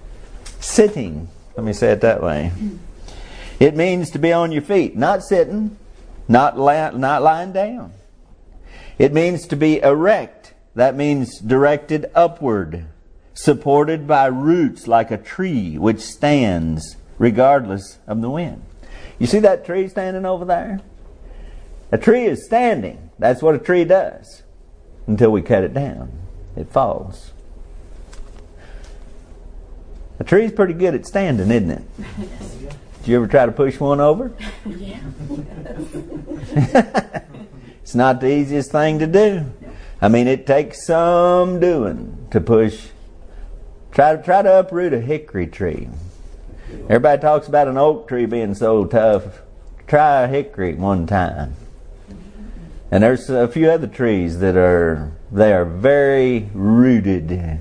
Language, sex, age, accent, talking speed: English, male, 50-69, American, 135 wpm